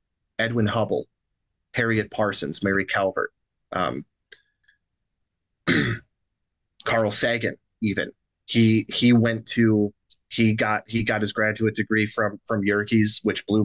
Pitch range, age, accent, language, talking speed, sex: 100-120 Hz, 30-49, American, English, 115 wpm, male